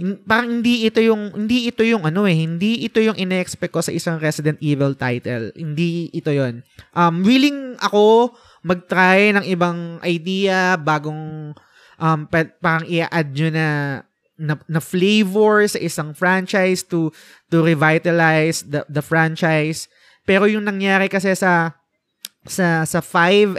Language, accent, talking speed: Filipino, native, 135 wpm